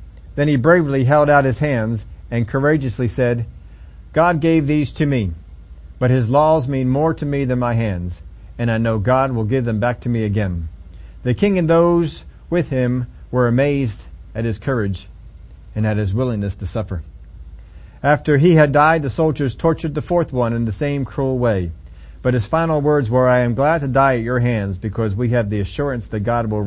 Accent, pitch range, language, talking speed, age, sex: American, 95-150 Hz, English, 200 wpm, 40-59, male